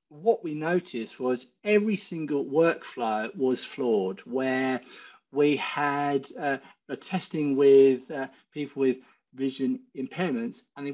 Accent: British